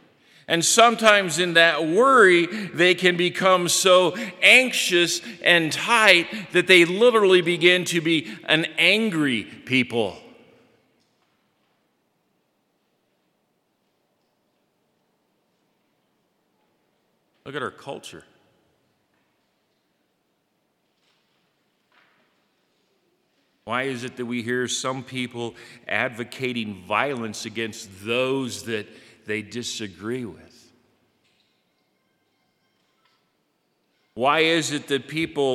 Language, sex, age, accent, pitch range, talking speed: English, male, 50-69, American, 120-170 Hz, 80 wpm